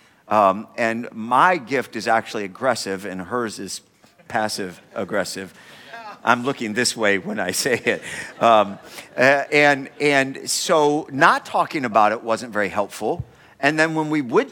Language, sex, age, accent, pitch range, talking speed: English, male, 50-69, American, 110-150 Hz, 155 wpm